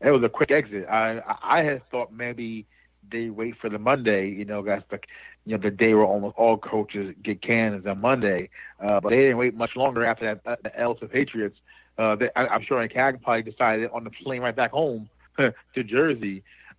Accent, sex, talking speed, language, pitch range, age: American, male, 220 wpm, English, 110-130 Hz, 40-59